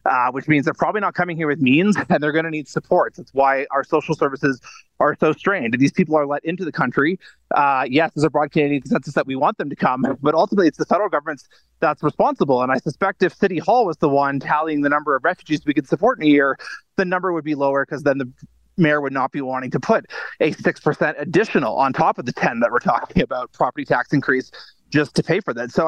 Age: 30-49